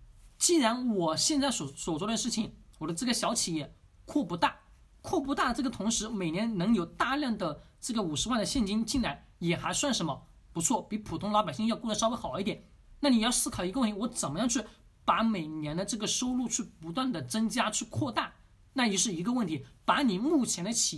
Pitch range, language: 165-250 Hz, Chinese